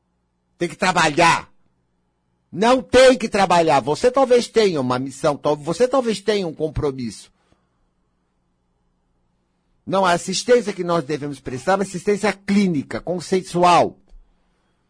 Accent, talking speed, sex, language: Brazilian, 115 wpm, male, Portuguese